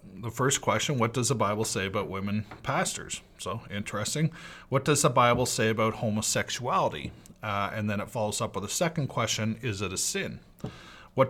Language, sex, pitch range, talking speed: English, male, 105-130 Hz, 185 wpm